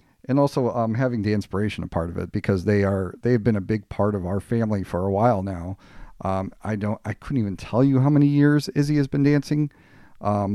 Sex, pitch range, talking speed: male, 95-110 Hz, 235 wpm